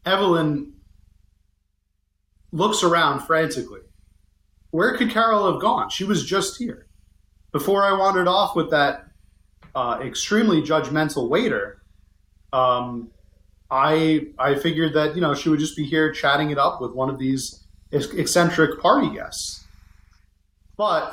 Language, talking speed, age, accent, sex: English, 130 wpm, 30-49, American, male